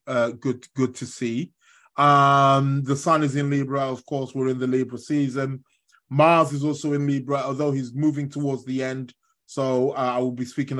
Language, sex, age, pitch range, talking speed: English, male, 20-39, 120-145 Hz, 195 wpm